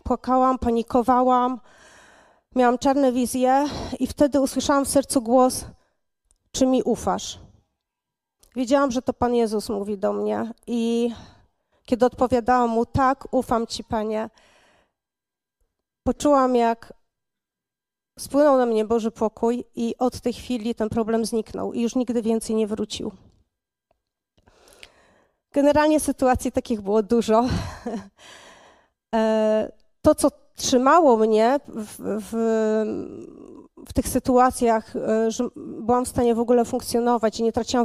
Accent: native